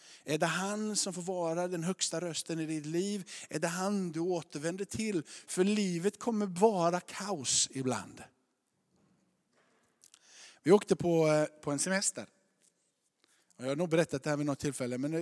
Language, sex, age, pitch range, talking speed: Swedish, male, 50-69, 135-180 Hz, 155 wpm